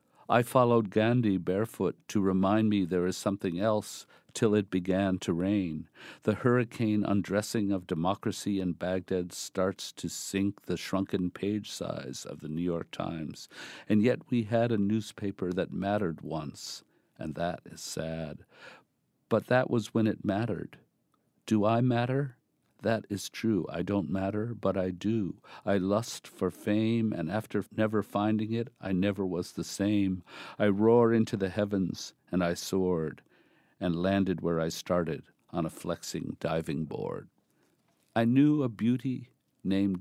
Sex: male